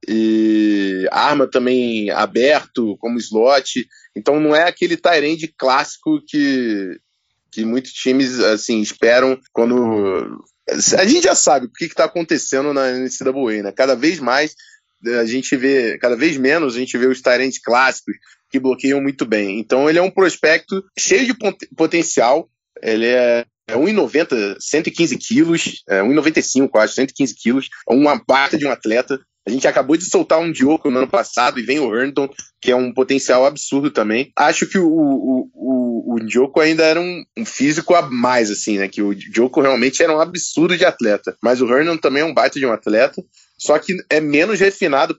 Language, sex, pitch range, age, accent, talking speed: Portuguese, male, 125-170 Hz, 20-39, Brazilian, 175 wpm